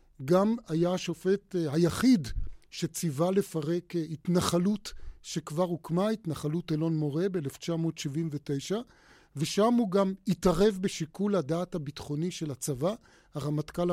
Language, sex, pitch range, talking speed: Hebrew, male, 155-195 Hz, 100 wpm